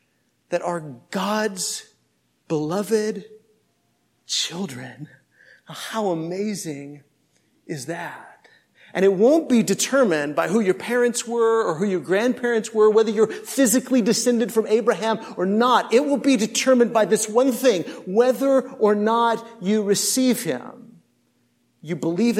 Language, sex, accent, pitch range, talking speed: English, male, American, 205-255 Hz, 130 wpm